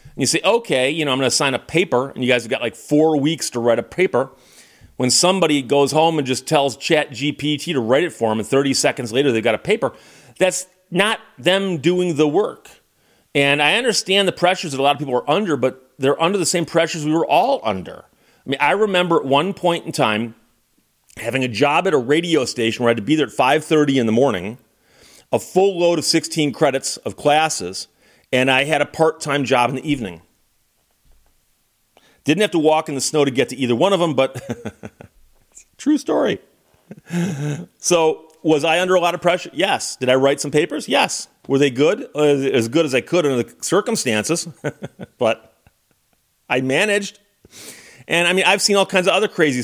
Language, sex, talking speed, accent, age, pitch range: English, male, 210 wpm, American, 40-59, 130-170 Hz